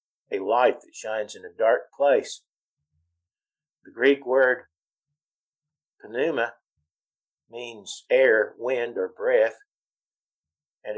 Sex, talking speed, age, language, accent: male, 100 wpm, 50-69, English, American